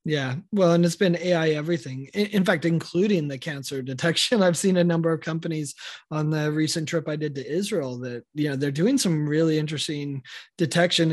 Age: 20-39